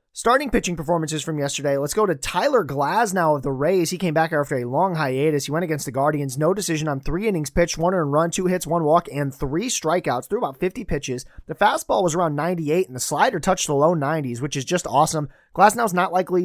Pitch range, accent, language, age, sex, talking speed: 145-185 Hz, American, English, 30-49, male, 230 wpm